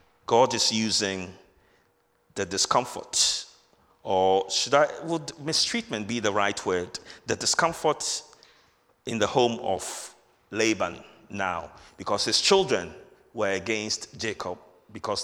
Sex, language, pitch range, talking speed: male, English, 100-125 Hz, 115 wpm